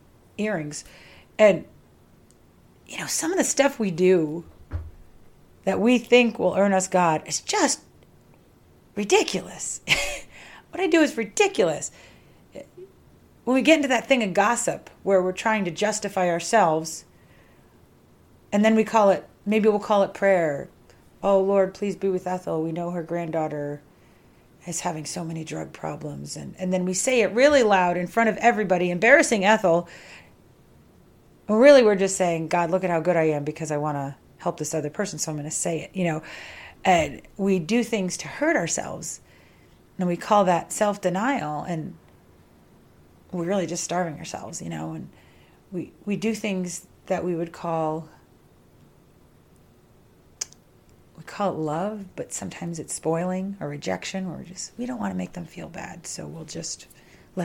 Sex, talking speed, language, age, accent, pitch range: female, 165 wpm, English, 40-59, American, 165-210 Hz